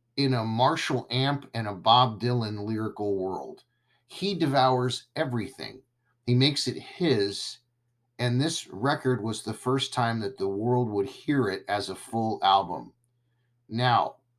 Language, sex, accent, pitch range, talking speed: English, male, American, 115-130 Hz, 145 wpm